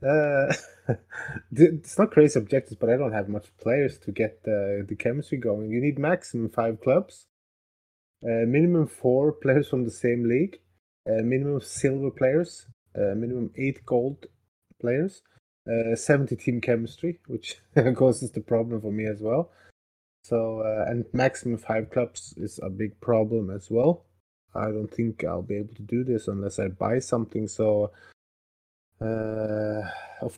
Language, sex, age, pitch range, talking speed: English, male, 20-39, 105-130 Hz, 155 wpm